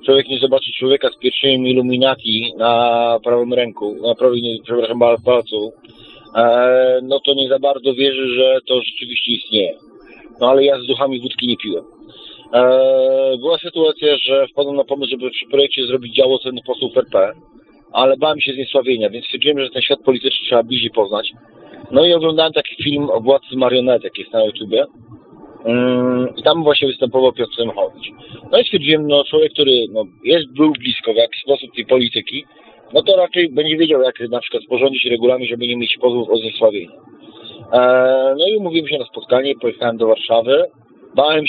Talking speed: 175 wpm